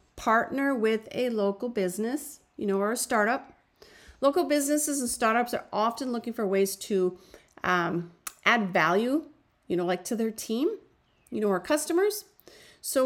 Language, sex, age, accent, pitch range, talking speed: English, female, 40-59, American, 210-285 Hz, 155 wpm